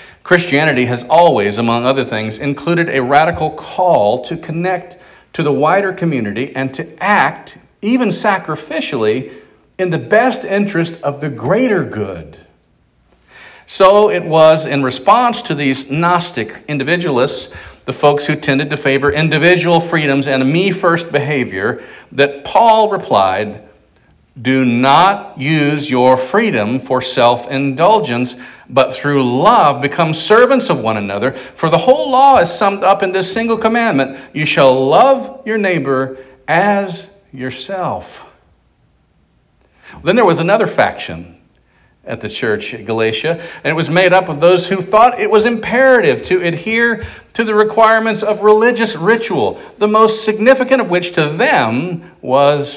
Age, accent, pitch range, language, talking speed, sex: 50-69, American, 130-195 Hz, English, 140 wpm, male